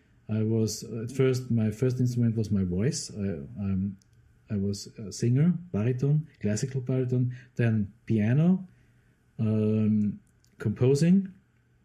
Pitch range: 110-130 Hz